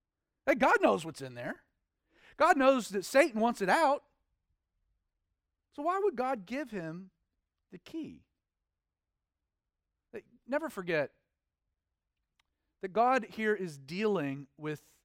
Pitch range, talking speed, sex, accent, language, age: 160-265 Hz, 110 wpm, male, American, English, 40-59